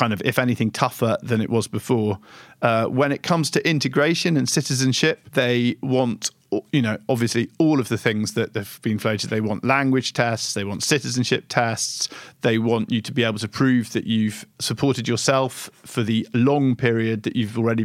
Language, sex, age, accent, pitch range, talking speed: English, male, 50-69, British, 110-130 Hz, 190 wpm